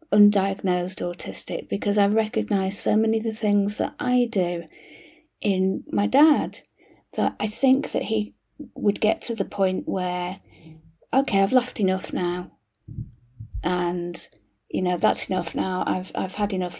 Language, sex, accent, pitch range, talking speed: English, female, British, 185-250 Hz, 150 wpm